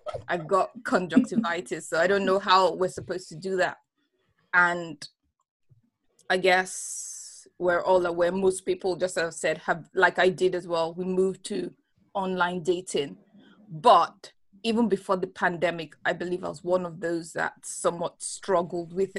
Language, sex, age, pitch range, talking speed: English, female, 20-39, 175-195 Hz, 165 wpm